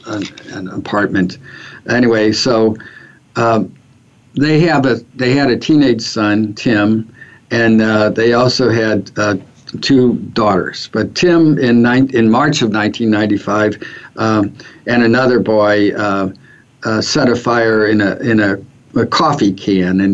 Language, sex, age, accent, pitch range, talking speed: English, male, 60-79, American, 100-120 Hz, 140 wpm